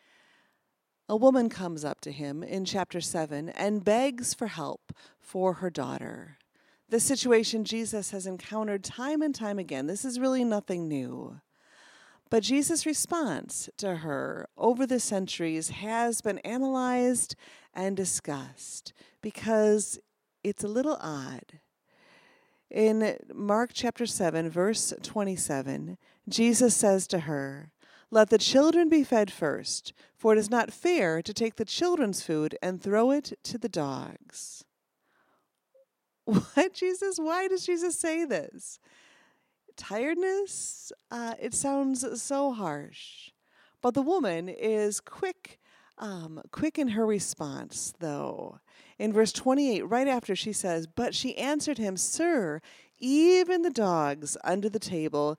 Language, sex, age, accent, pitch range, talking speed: English, female, 40-59, American, 185-265 Hz, 130 wpm